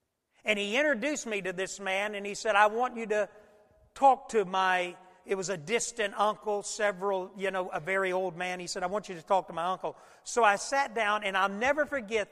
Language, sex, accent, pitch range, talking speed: English, male, American, 165-210 Hz, 230 wpm